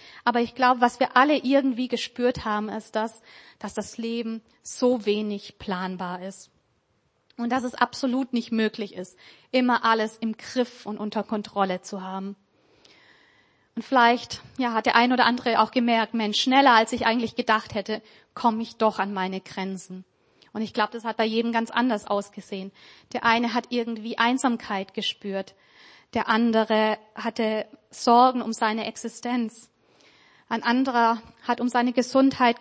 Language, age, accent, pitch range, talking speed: German, 30-49, German, 220-245 Hz, 155 wpm